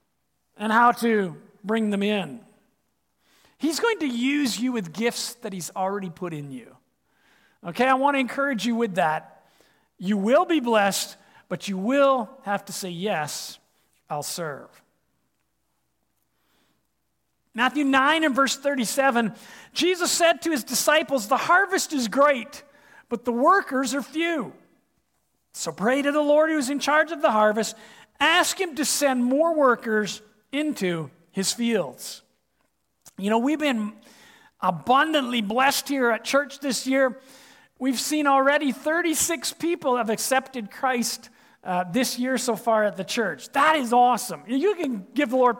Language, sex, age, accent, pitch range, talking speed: English, male, 50-69, American, 220-295 Hz, 150 wpm